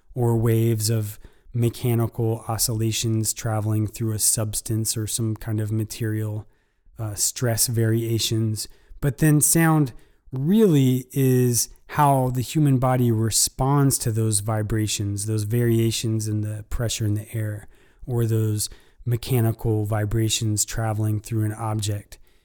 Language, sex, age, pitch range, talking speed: English, male, 20-39, 110-130 Hz, 125 wpm